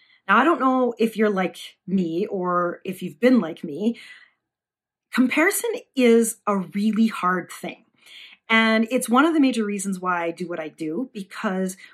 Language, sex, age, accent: English, female, 40-59, American